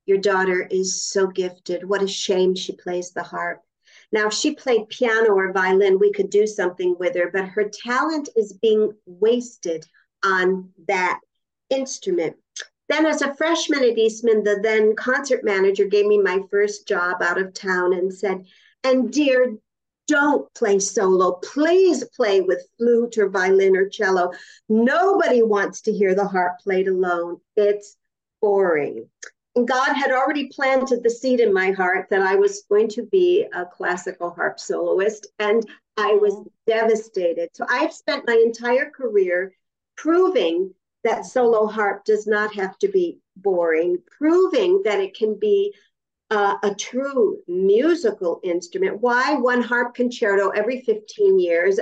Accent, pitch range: American, 190-295 Hz